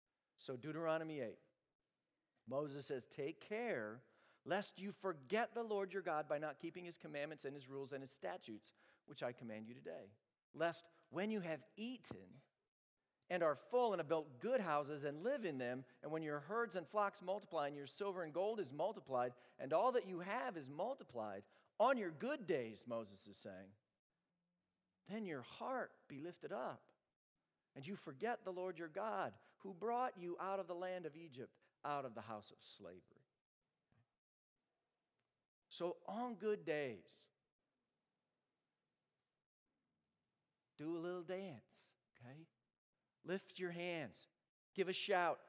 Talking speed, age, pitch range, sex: 155 wpm, 50-69, 145-195 Hz, male